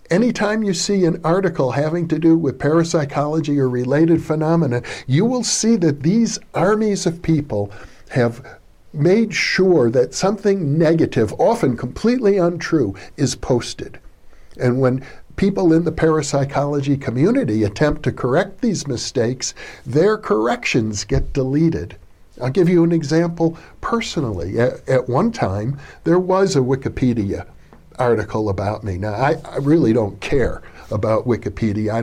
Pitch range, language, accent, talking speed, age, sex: 115-165 Hz, English, American, 140 wpm, 60-79, male